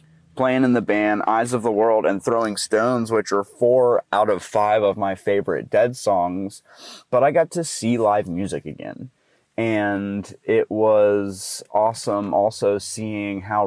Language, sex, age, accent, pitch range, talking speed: English, male, 30-49, American, 95-115 Hz, 160 wpm